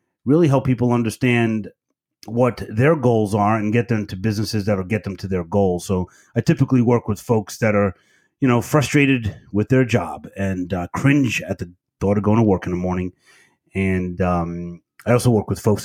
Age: 30-49